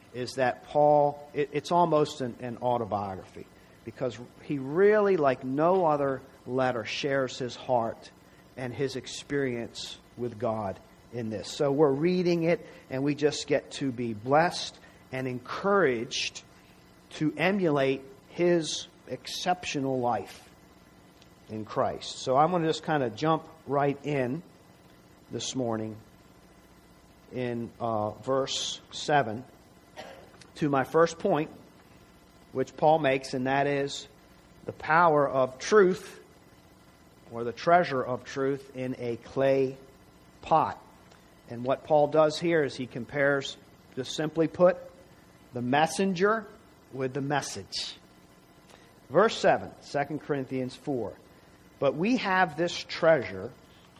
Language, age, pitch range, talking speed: English, 50-69, 120-155 Hz, 125 wpm